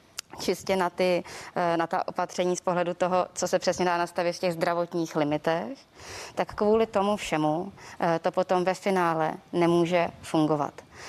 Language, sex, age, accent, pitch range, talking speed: Czech, female, 20-39, native, 170-200 Hz, 150 wpm